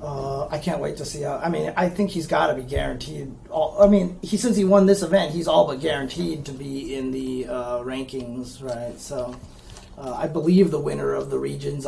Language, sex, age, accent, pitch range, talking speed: English, male, 30-49, American, 140-195 Hz, 225 wpm